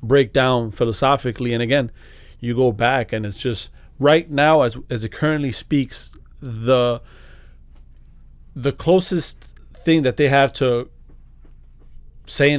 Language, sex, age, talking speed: English, male, 30-49, 130 wpm